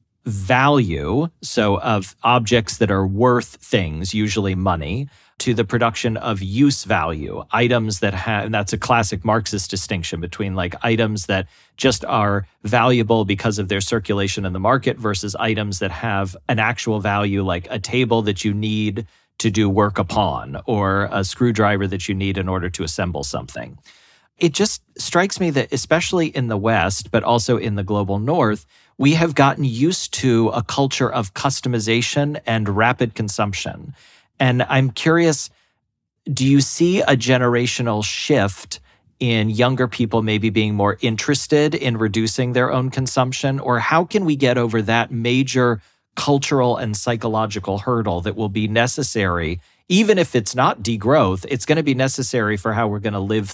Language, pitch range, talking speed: English, 100-125 Hz, 165 wpm